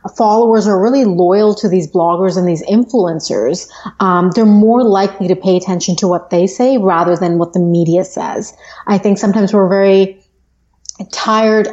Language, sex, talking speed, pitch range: English, female, 170 wpm, 175-210 Hz